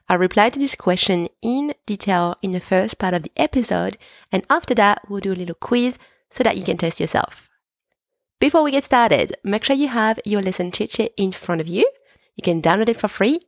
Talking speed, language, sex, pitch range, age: 220 wpm, English, female, 180-255 Hz, 30-49